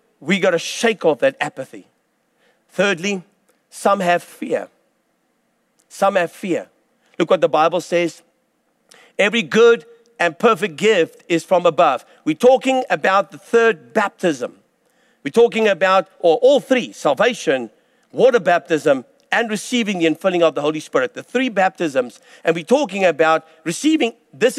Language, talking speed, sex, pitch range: English, 145 wpm, male, 185-250 Hz